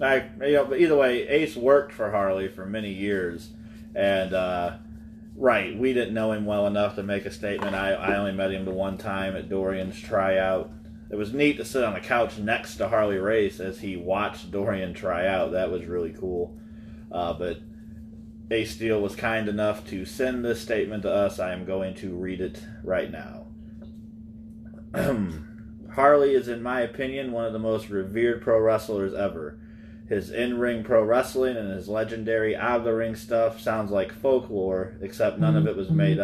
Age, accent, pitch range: 30-49, American, 95-115 Hz